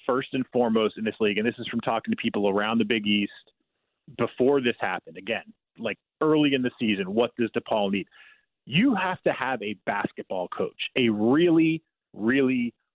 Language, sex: English, male